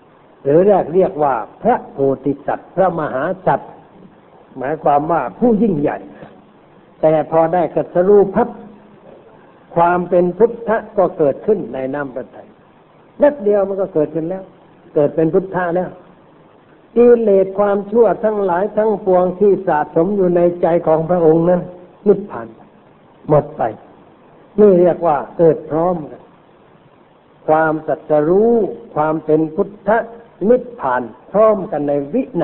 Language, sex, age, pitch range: Thai, male, 60-79, 150-200 Hz